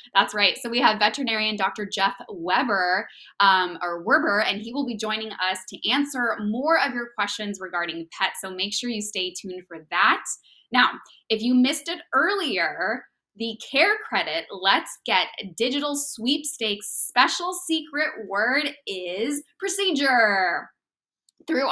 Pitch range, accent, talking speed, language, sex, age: 195-275 Hz, American, 145 wpm, English, female, 10-29